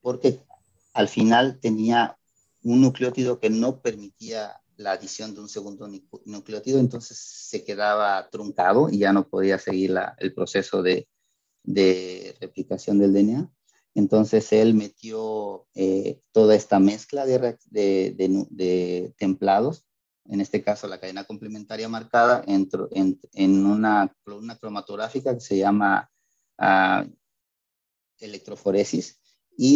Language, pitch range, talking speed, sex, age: Spanish, 100-115 Hz, 125 wpm, male, 40-59